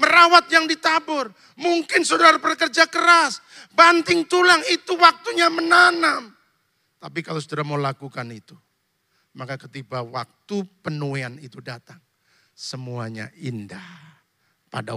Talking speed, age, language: 110 wpm, 40-59, Indonesian